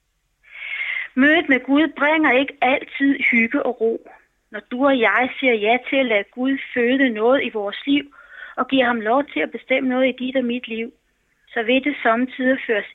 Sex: female